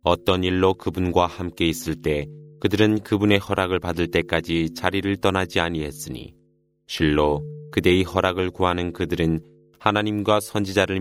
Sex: male